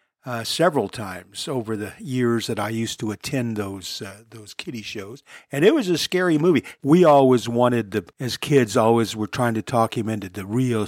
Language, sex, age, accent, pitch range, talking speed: English, male, 50-69, American, 110-145 Hz, 205 wpm